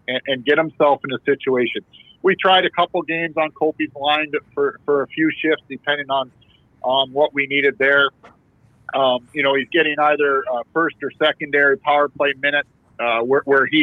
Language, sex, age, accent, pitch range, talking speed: English, male, 50-69, American, 140-175 Hz, 185 wpm